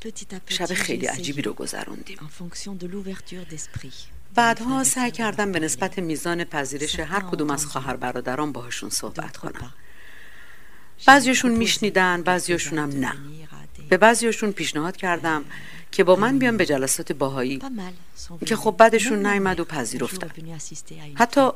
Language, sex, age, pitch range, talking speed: Persian, female, 50-69, 145-190 Hz, 115 wpm